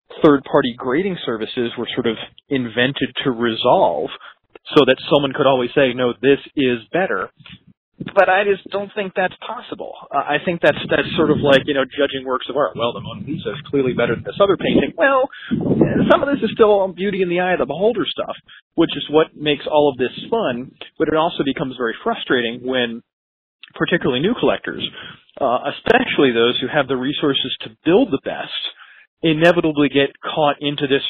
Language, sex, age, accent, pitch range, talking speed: English, male, 30-49, American, 130-180 Hz, 190 wpm